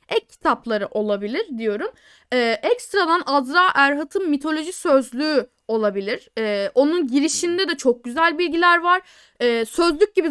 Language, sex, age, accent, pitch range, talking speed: Turkish, female, 10-29, native, 245-360 Hz, 130 wpm